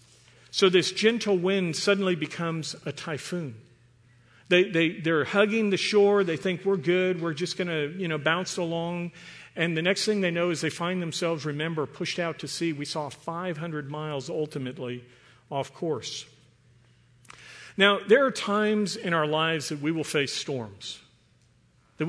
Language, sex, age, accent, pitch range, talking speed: English, male, 50-69, American, 140-180 Hz, 165 wpm